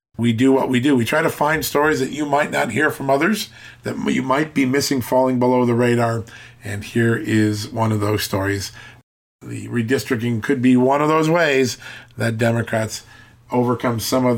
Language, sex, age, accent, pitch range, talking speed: English, male, 40-59, American, 110-130 Hz, 190 wpm